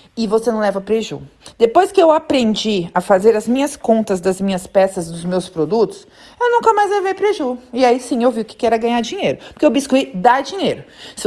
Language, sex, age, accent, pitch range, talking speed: Portuguese, female, 40-59, Brazilian, 200-285 Hz, 220 wpm